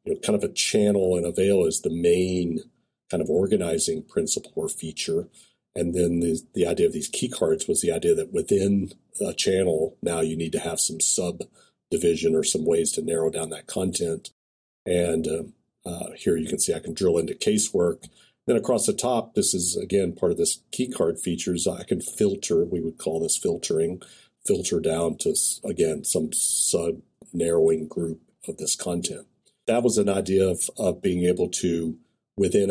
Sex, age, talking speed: male, 50-69, 185 wpm